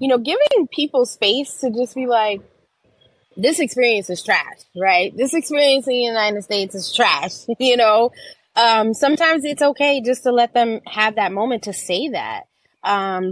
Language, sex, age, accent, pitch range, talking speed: English, female, 20-39, American, 180-240 Hz, 175 wpm